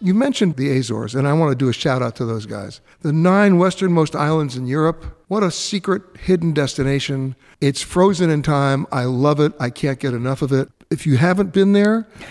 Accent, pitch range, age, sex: American, 135-185 Hz, 60-79, male